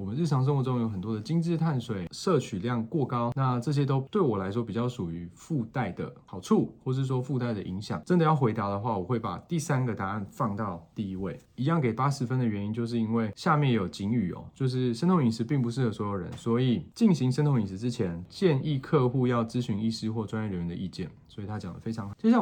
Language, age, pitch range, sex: Chinese, 20-39, 110-140 Hz, male